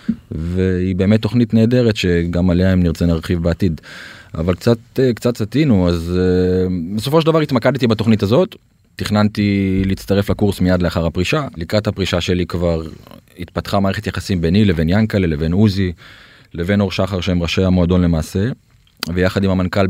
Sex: male